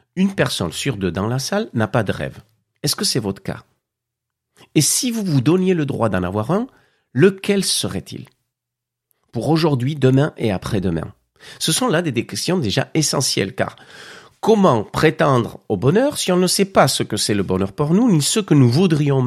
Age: 50-69